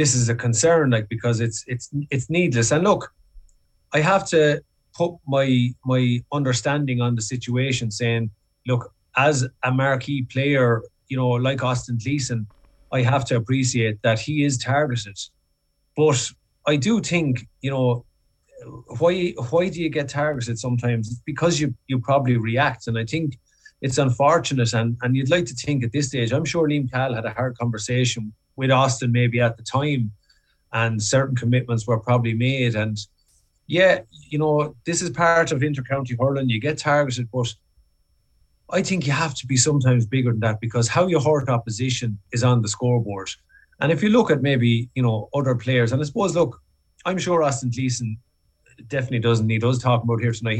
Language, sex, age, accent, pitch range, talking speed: English, male, 30-49, Irish, 115-145 Hz, 180 wpm